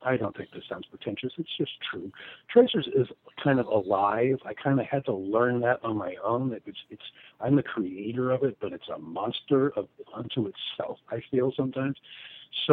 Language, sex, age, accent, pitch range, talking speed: English, male, 50-69, American, 110-145 Hz, 200 wpm